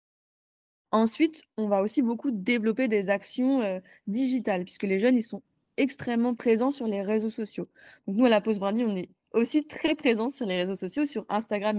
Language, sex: French, female